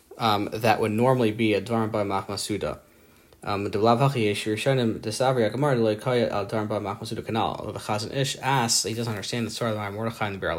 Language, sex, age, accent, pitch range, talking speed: English, male, 20-39, American, 100-115 Hz, 195 wpm